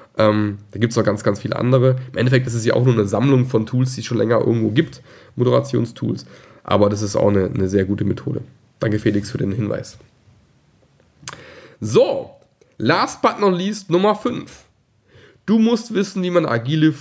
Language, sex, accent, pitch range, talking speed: German, male, German, 110-155 Hz, 190 wpm